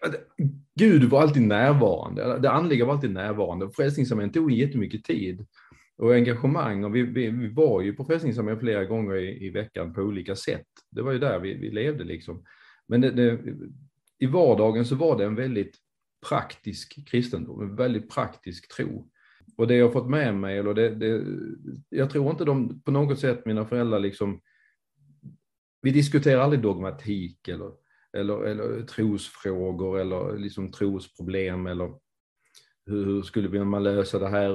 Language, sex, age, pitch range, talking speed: Swedish, male, 30-49, 100-130 Hz, 155 wpm